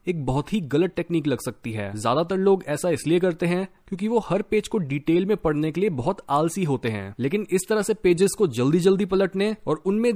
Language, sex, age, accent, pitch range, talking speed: Hindi, male, 20-39, native, 140-195 Hz, 230 wpm